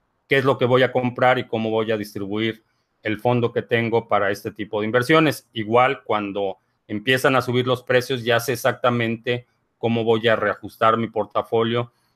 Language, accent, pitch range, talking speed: Spanish, Mexican, 110-125 Hz, 185 wpm